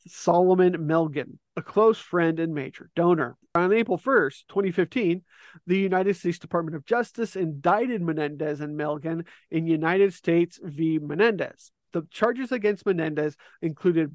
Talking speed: 135 wpm